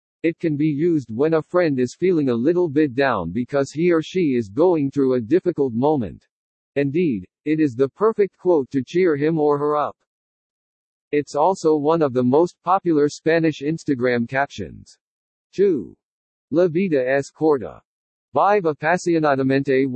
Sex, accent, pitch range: male, American, 135-170 Hz